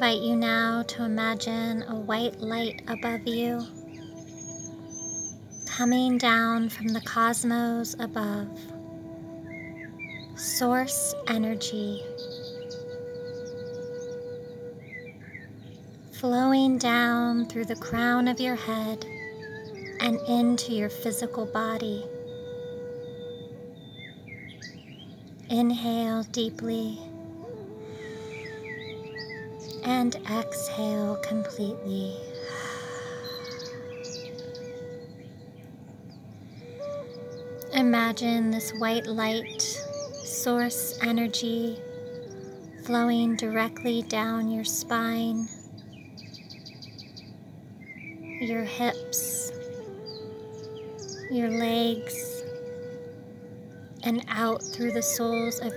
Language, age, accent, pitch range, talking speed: English, 30-49, American, 160-240 Hz, 60 wpm